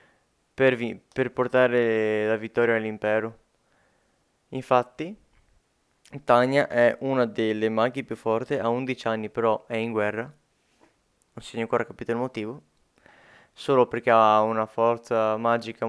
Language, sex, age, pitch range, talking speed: Italian, male, 20-39, 115-130 Hz, 130 wpm